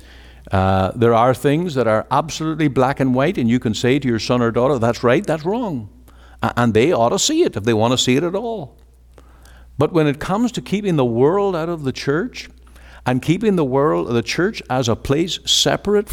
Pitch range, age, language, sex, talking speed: 90-140 Hz, 60-79, English, male, 220 wpm